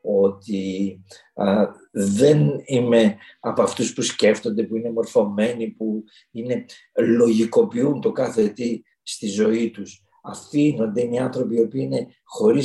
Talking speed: 130 wpm